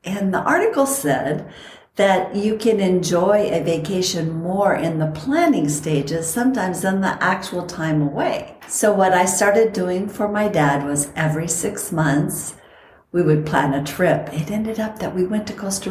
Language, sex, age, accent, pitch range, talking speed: English, female, 60-79, American, 155-205 Hz, 175 wpm